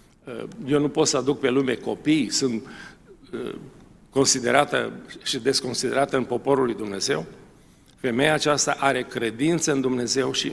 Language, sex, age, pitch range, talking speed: Romanian, male, 50-69, 125-160 Hz, 130 wpm